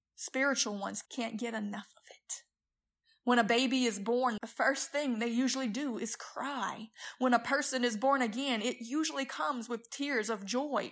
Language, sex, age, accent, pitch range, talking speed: English, female, 30-49, American, 225-275 Hz, 180 wpm